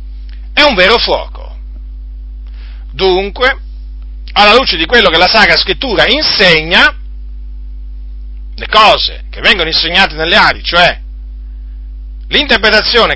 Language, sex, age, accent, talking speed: Italian, male, 40-59, native, 105 wpm